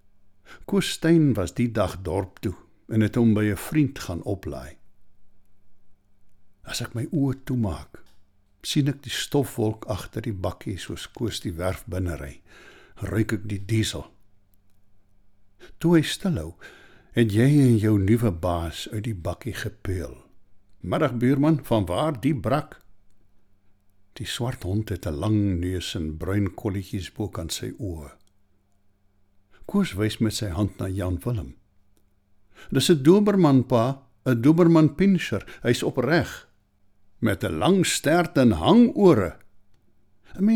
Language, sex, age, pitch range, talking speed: English, male, 60-79, 95-120 Hz, 140 wpm